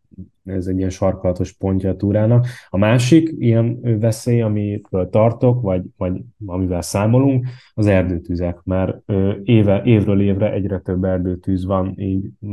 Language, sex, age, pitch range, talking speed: Hungarian, male, 20-39, 95-110 Hz, 135 wpm